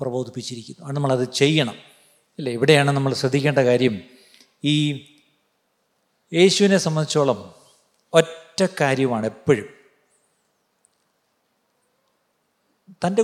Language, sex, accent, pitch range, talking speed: Malayalam, male, native, 130-175 Hz, 75 wpm